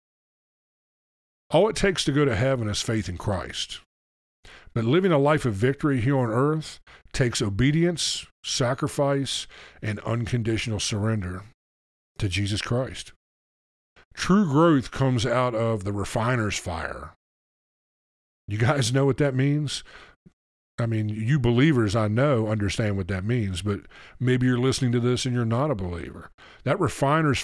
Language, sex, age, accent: English, male, 50-69, American